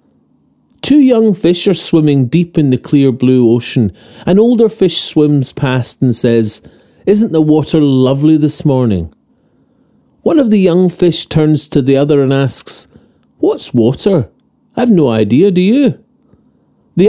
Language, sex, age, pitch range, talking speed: English, male, 40-59, 120-175 Hz, 150 wpm